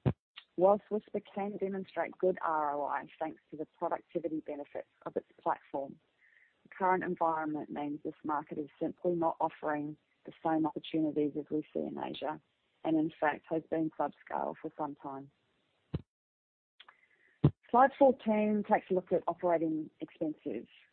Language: English